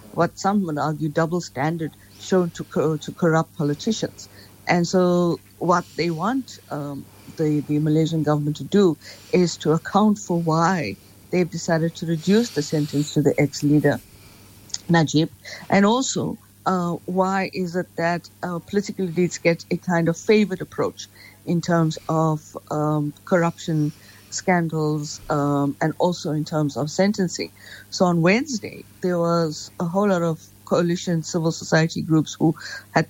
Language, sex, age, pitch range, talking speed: English, female, 50-69, 150-175 Hz, 150 wpm